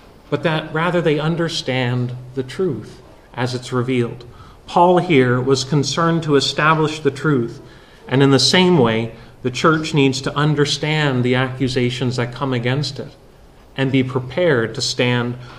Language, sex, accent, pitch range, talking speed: English, male, American, 125-145 Hz, 150 wpm